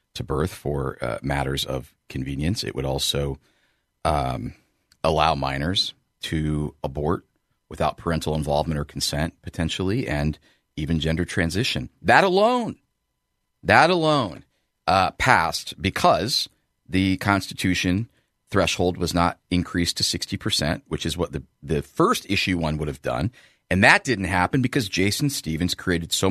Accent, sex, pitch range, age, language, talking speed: American, male, 80-130 Hz, 40-59, English, 140 wpm